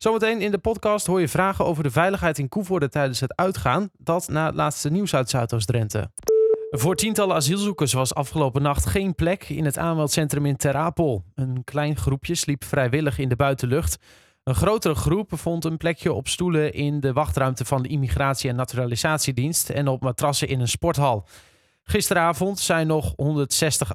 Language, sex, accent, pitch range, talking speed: Dutch, male, Dutch, 135-170 Hz, 175 wpm